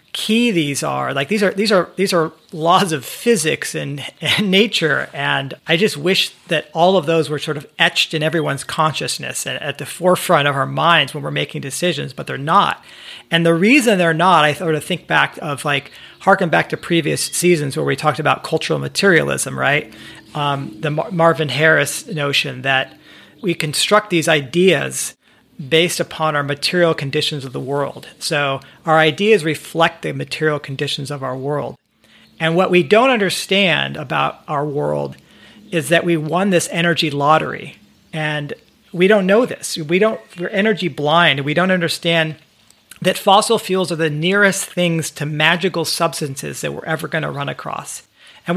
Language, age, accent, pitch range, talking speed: English, 40-59, American, 145-180 Hz, 175 wpm